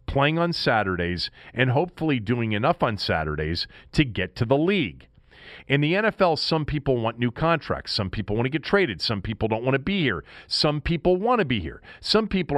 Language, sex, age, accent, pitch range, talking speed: English, male, 40-59, American, 95-145 Hz, 205 wpm